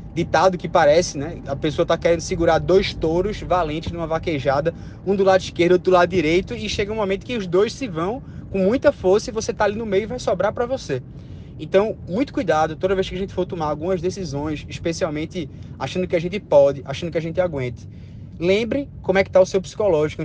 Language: Portuguese